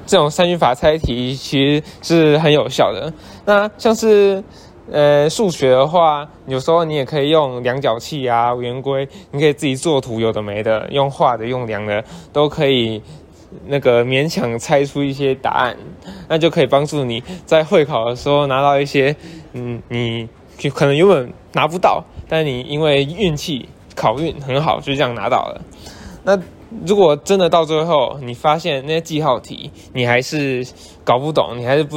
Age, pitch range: 20-39, 125-160 Hz